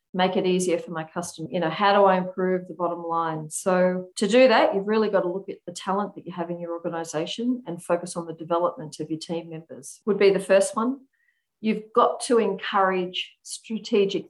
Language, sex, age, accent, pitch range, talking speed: English, female, 40-59, Australian, 170-205 Hz, 220 wpm